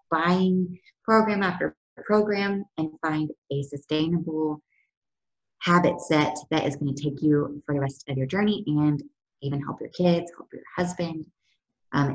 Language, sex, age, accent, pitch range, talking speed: English, female, 20-39, American, 145-185 Hz, 155 wpm